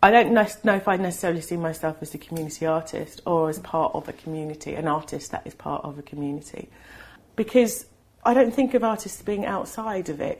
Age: 40-59